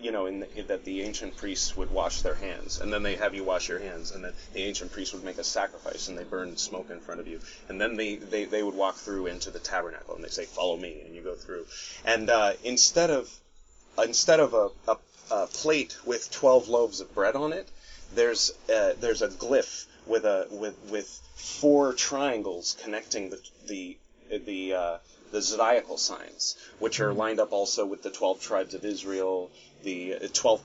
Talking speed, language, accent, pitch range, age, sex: 200 wpm, English, American, 95-125 Hz, 30-49, male